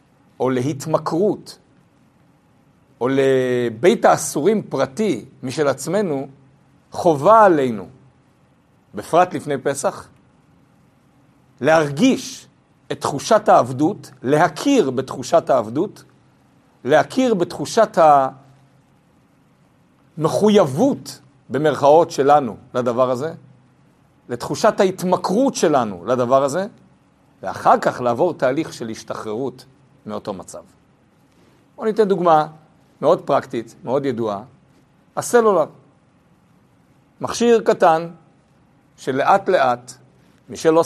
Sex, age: male, 50-69